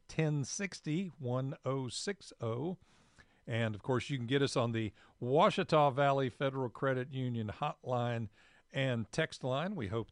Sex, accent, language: male, American, English